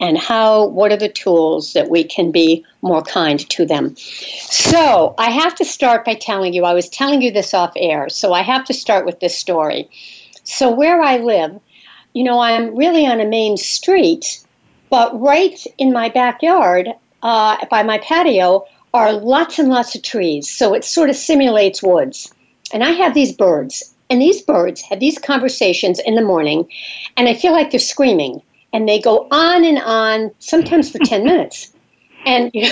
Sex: female